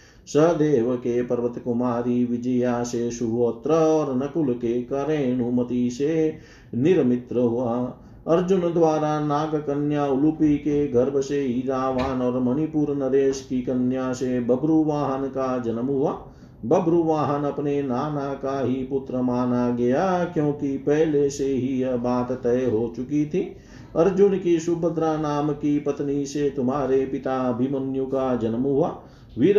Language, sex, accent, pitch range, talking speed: Hindi, male, native, 125-155 Hz, 130 wpm